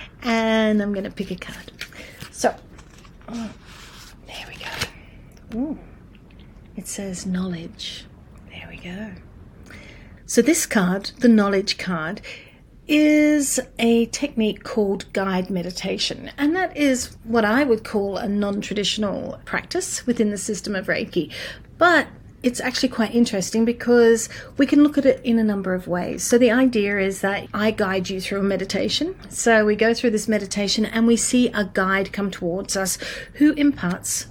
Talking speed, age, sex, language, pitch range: 155 wpm, 40-59, female, English, 195-245 Hz